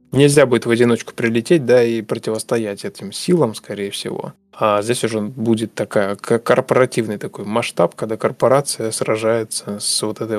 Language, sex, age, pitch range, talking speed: Russian, male, 20-39, 110-130 Hz, 150 wpm